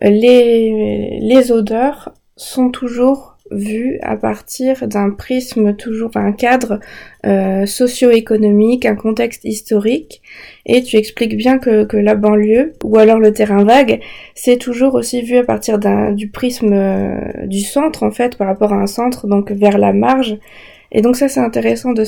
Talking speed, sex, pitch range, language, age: 165 wpm, female, 210-245 Hz, French, 20-39